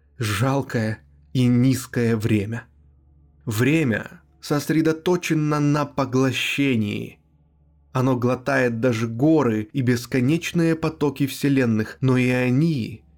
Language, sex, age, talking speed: Russian, male, 20-39, 85 wpm